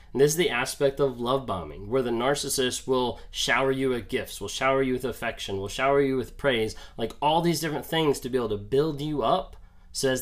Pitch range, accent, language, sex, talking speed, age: 110-140 Hz, American, English, male, 235 wpm, 30-49